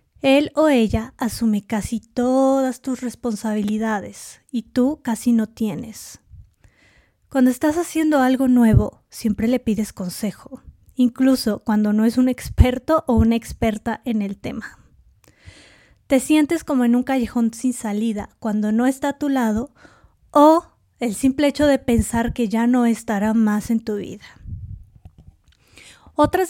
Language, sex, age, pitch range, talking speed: Spanish, female, 20-39, 220-265 Hz, 145 wpm